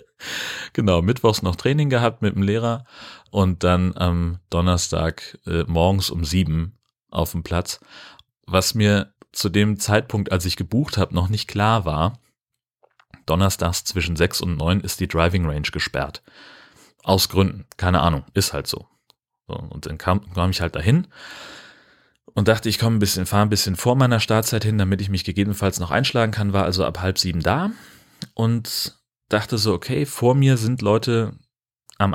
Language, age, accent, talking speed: German, 30-49, German, 170 wpm